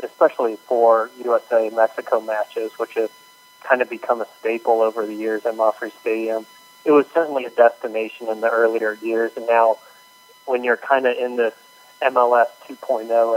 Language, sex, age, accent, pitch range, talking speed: English, male, 30-49, American, 115-145 Hz, 160 wpm